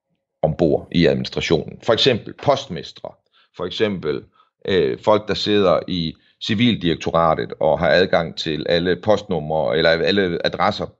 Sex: male